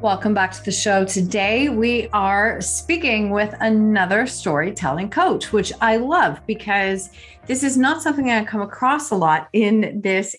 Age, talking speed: 40-59, 160 wpm